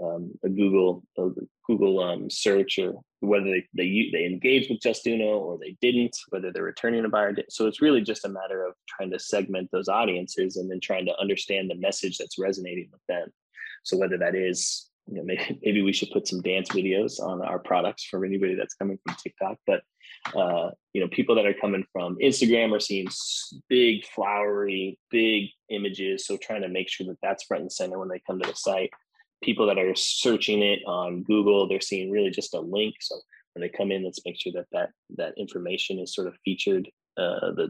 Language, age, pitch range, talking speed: English, 20-39, 95-110 Hz, 210 wpm